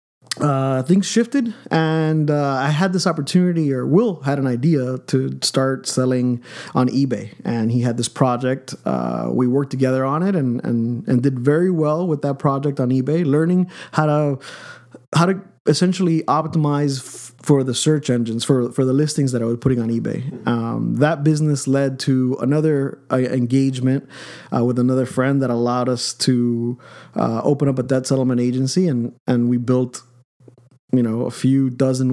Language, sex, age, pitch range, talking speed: English, male, 30-49, 120-145 Hz, 175 wpm